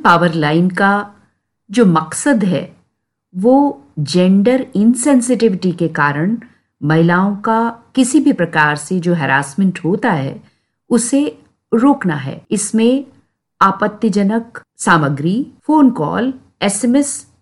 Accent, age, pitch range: native, 50-69, 185-260 Hz